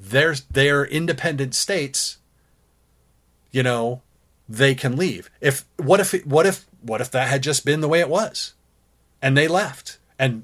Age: 40-59